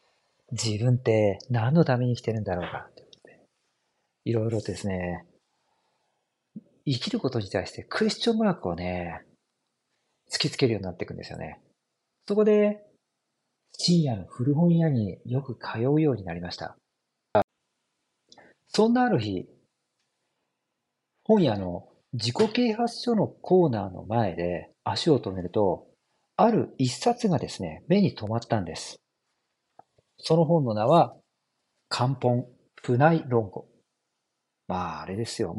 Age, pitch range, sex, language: 40-59, 100-160 Hz, male, Japanese